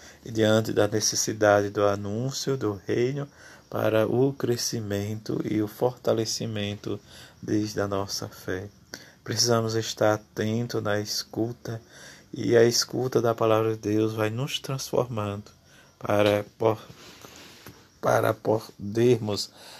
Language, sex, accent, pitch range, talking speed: Portuguese, male, Brazilian, 105-115 Hz, 110 wpm